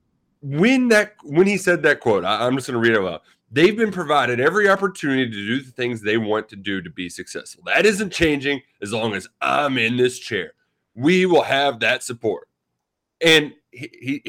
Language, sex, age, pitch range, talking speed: English, male, 30-49, 135-210 Hz, 205 wpm